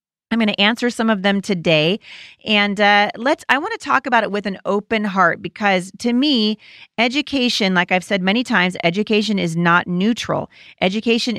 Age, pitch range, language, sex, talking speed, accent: 40-59, 170-225 Hz, English, female, 185 wpm, American